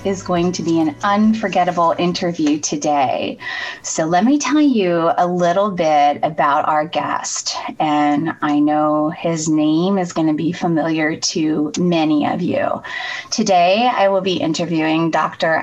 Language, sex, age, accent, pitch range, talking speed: English, female, 20-39, American, 170-230 Hz, 150 wpm